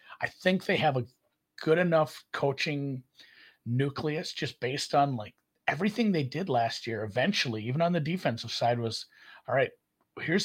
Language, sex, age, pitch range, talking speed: English, male, 40-59, 120-150 Hz, 160 wpm